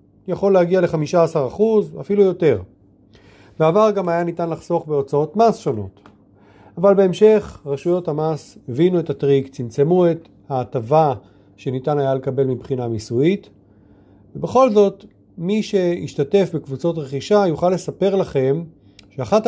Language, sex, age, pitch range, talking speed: Hebrew, male, 40-59, 115-180 Hz, 115 wpm